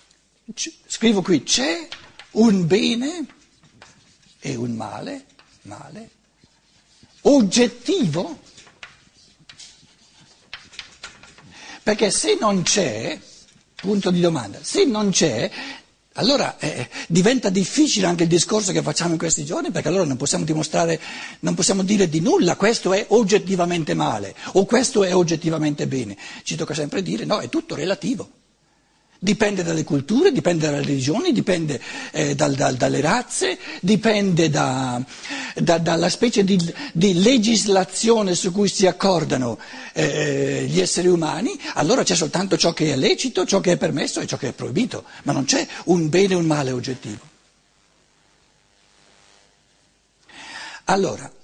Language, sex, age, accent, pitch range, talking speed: Italian, male, 60-79, native, 155-215 Hz, 125 wpm